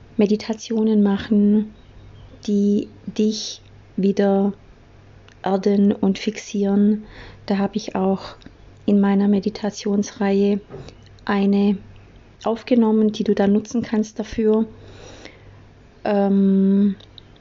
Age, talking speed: 30-49, 85 wpm